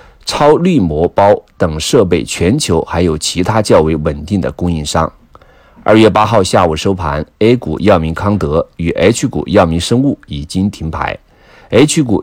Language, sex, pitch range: Chinese, male, 80-110 Hz